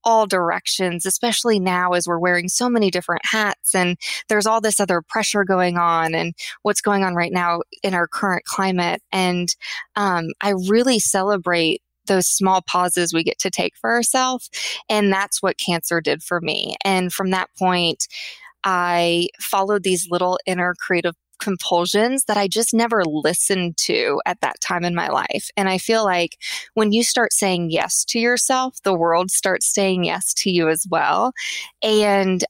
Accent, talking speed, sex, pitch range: American, 175 wpm, female, 175-215 Hz